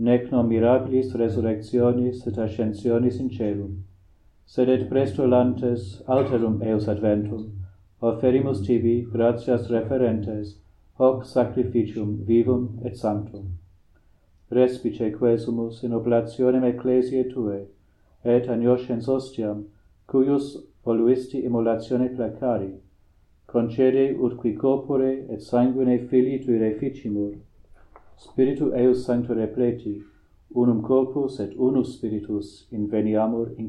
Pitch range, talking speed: 105-125 Hz, 100 wpm